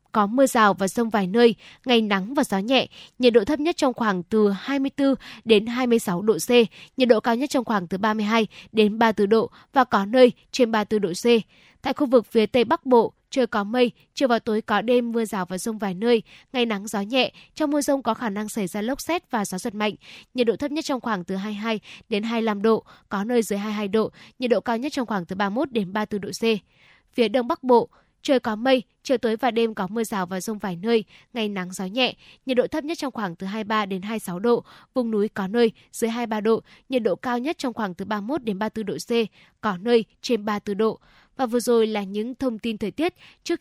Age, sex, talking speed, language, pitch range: 10-29, female, 240 wpm, Vietnamese, 205-250 Hz